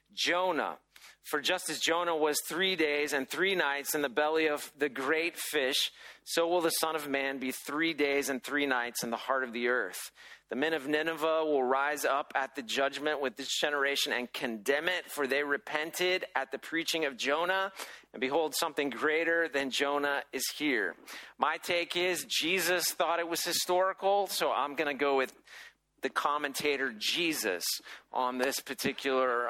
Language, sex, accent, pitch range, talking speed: English, male, American, 135-165 Hz, 180 wpm